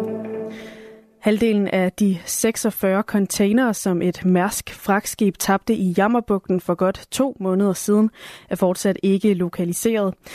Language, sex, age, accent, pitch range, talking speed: Danish, female, 20-39, native, 185-215 Hz, 120 wpm